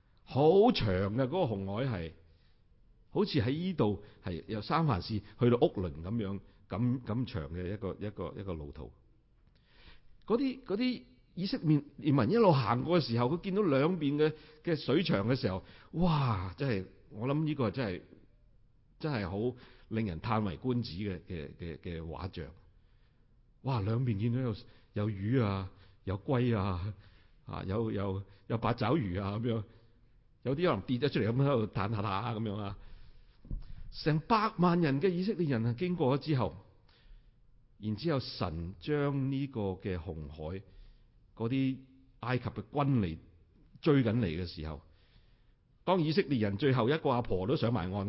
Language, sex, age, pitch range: Chinese, male, 50-69, 95-135 Hz